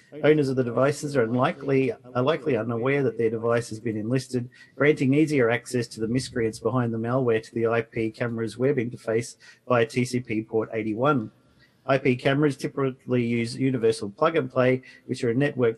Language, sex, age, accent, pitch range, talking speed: English, male, 40-59, Australian, 110-130 Hz, 170 wpm